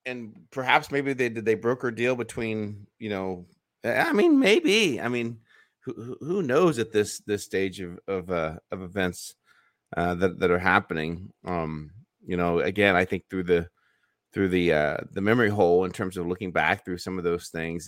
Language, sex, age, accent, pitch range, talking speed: English, male, 30-49, American, 85-105 Hz, 195 wpm